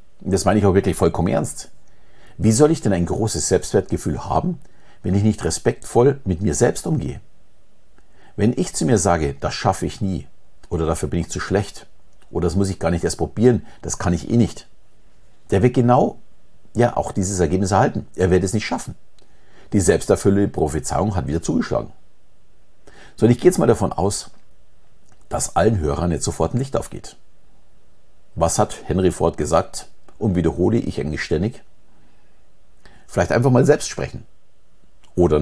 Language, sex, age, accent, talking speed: German, male, 50-69, German, 175 wpm